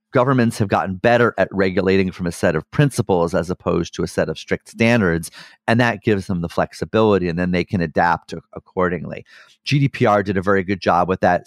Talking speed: 205 wpm